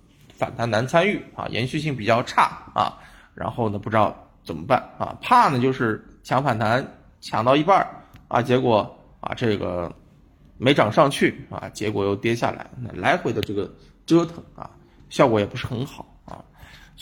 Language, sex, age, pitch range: Chinese, male, 20-39, 110-150 Hz